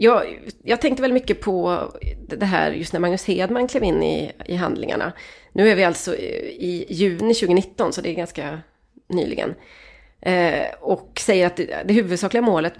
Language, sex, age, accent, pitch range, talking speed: Swedish, female, 30-49, native, 170-230 Hz, 175 wpm